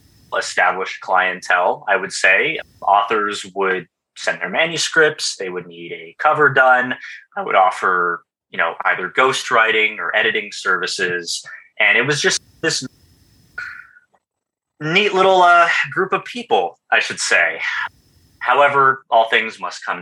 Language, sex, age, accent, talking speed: English, male, 20-39, American, 135 wpm